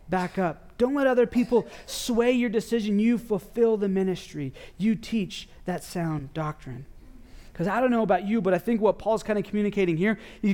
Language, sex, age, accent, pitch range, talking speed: English, male, 30-49, American, 170-220 Hz, 195 wpm